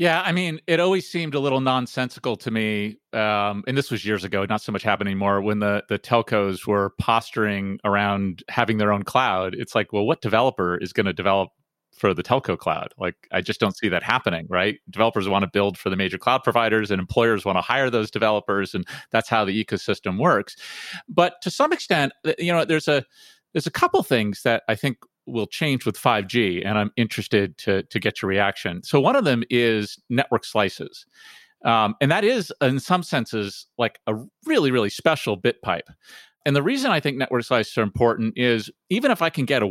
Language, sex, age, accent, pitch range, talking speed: English, male, 30-49, American, 105-140 Hz, 210 wpm